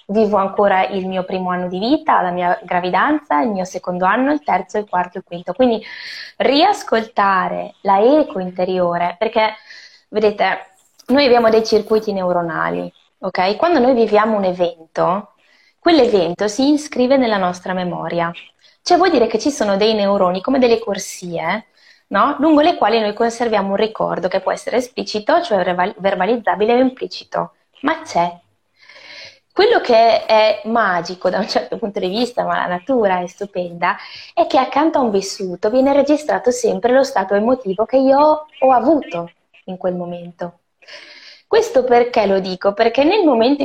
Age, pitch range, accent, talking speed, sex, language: 20-39, 185-250 Hz, native, 160 wpm, female, Italian